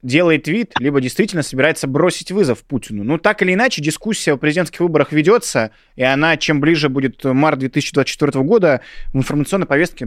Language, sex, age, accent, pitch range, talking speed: Russian, male, 20-39, native, 125-165 Hz, 165 wpm